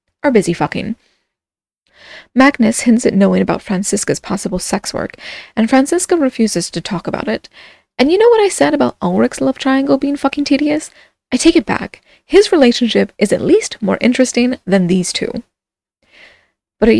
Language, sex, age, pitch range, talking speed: English, female, 20-39, 195-280 Hz, 170 wpm